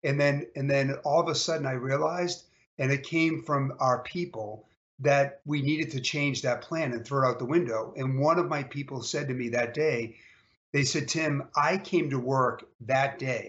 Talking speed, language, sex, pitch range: 215 wpm, English, male, 125-155 Hz